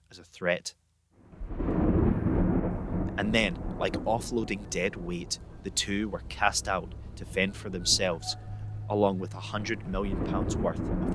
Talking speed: 135 wpm